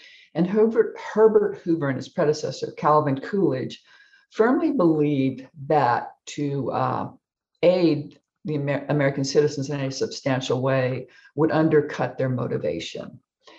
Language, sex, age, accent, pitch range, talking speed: English, female, 50-69, American, 135-160 Hz, 120 wpm